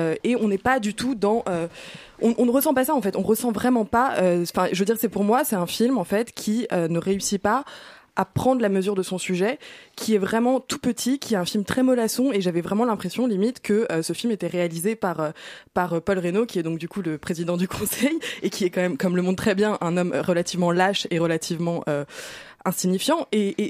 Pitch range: 180-230 Hz